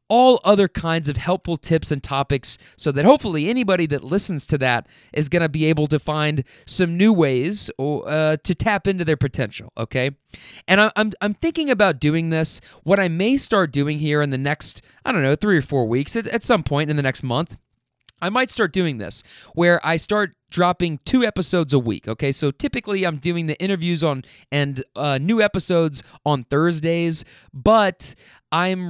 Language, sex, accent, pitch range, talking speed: English, male, American, 150-200 Hz, 195 wpm